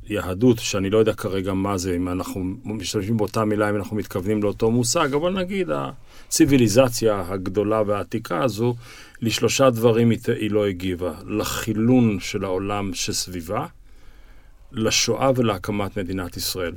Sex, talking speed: male, 130 wpm